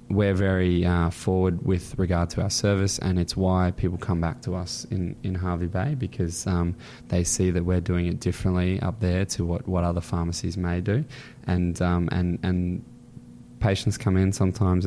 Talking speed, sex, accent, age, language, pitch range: 190 wpm, male, Australian, 20-39, English, 85-100 Hz